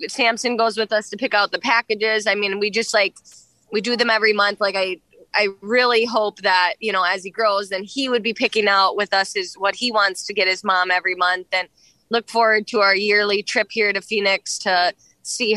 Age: 20-39